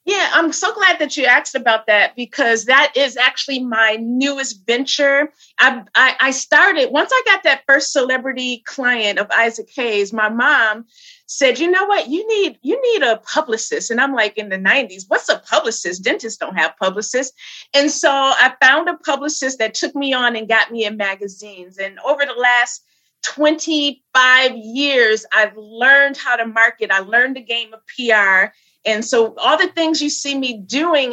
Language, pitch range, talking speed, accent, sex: English, 230-295 Hz, 185 wpm, American, female